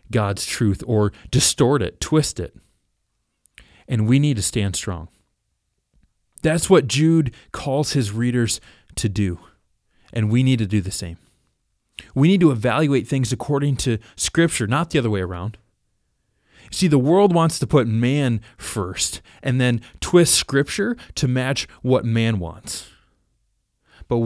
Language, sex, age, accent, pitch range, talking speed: English, male, 30-49, American, 100-130 Hz, 145 wpm